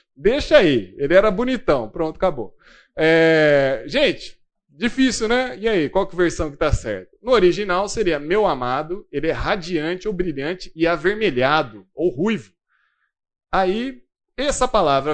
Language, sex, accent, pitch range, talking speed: Portuguese, male, Brazilian, 150-225 Hz, 150 wpm